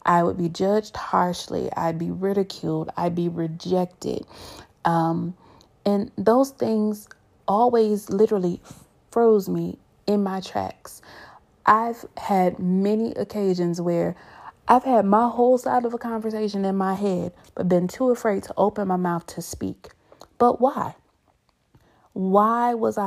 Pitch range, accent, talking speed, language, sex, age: 175-220 Hz, American, 135 wpm, English, female, 30-49